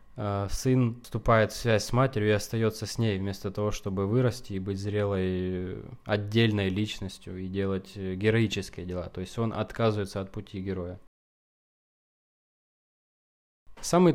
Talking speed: 130 wpm